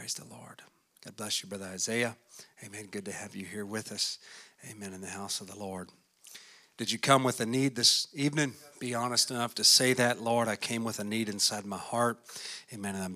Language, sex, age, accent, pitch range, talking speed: English, male, 40-59, American, 115-150 Hz, 225 wpm